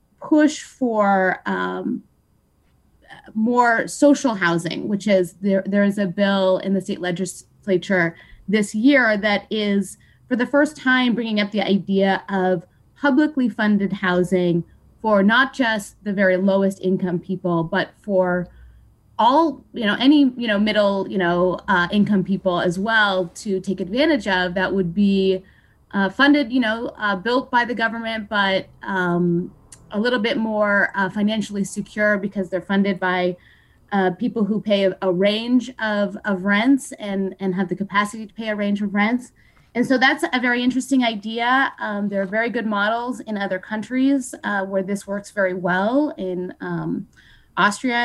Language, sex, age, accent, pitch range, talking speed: English, female, 20-39, American, 190-240 Hz, 165 wpm